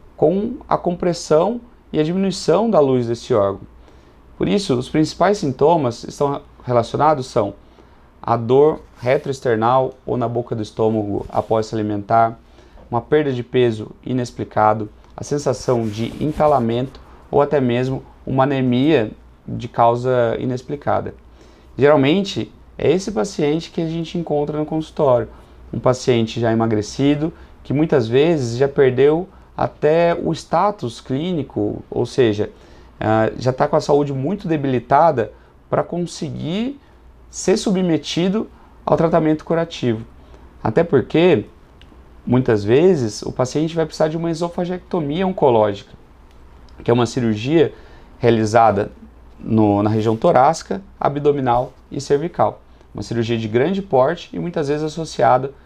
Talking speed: 125 wpm